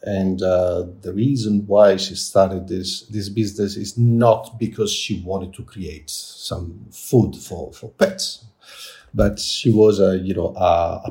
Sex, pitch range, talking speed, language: male, 95-115 Hz, 160 wpm, English